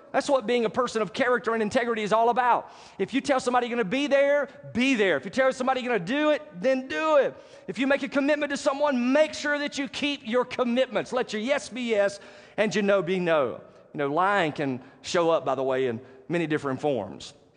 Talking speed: 245 wpm